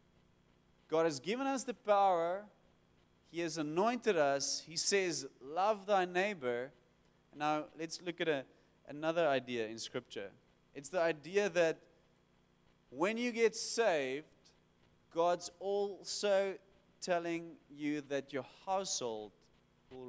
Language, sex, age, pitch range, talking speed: English, male, 30-49, 125-195 Hz, 115 wpm